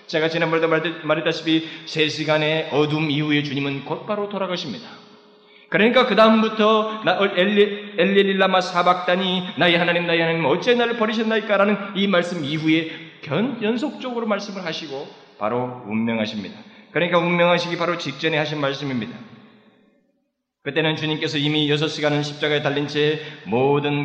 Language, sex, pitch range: Korean, male, 150-205 Hz